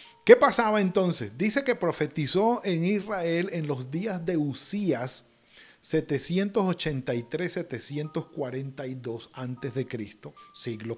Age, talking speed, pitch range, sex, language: 40-59, 85 wpm, 130-170 Hz, male, Spanish